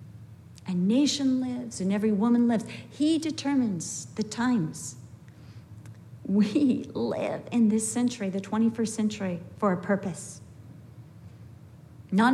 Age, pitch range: 50-69, 190-265 Hz